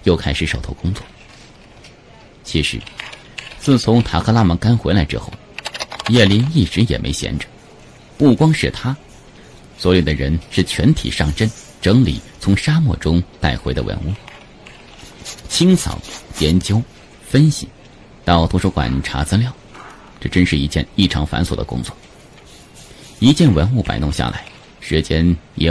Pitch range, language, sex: 80-115 Hz, Chinese, male